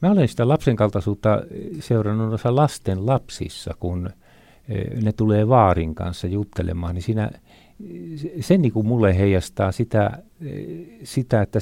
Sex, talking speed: male, 135 wpm